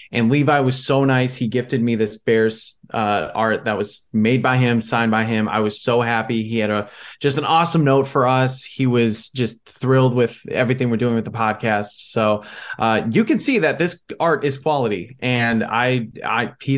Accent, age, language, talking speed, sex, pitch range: American, 20-39, English, 205 wpm, male, 115-145 Hz